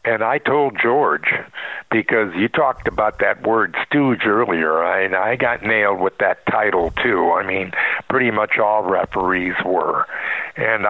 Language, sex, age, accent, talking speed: English, male, 60-79, American, 155 wpm